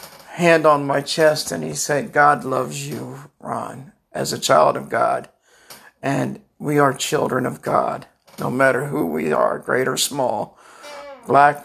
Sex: male